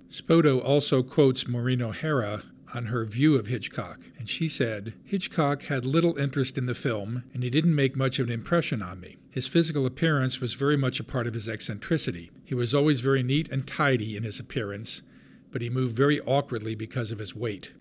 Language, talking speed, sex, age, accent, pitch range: English, 200 wpm, male, 50-69, American, 120-145 Hz